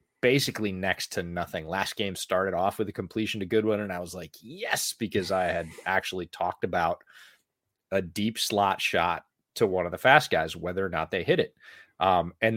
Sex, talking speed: male, 200 wpm